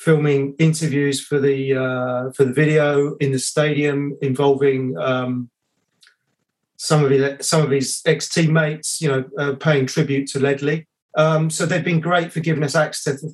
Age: 30-49